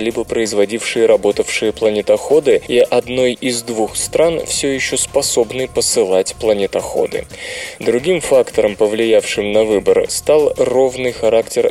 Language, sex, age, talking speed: Russian, male, 20-39, 115 wpm